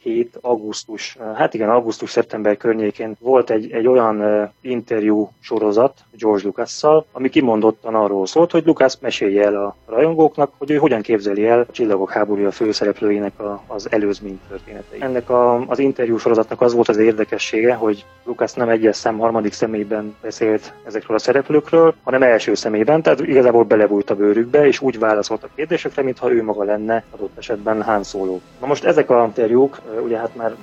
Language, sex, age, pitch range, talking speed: Hungarian, male, 20-39, 105-120 Hz, 170 wpm